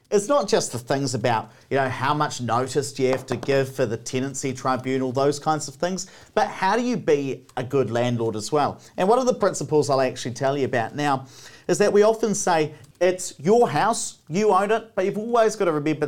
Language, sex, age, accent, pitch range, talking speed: English, male, 40-59, Australian, 130-180 Hz, 230 wpm